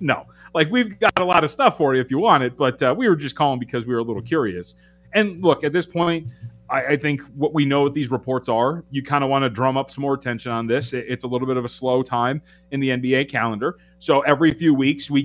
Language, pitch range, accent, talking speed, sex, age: English, 125-165 Hz, American, 280 wpm, male, 30-49